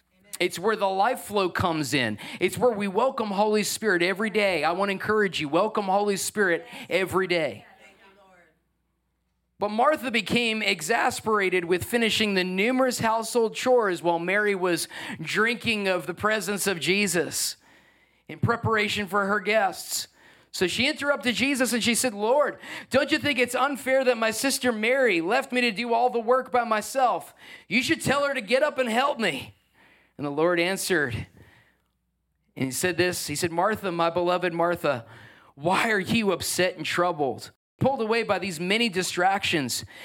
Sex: male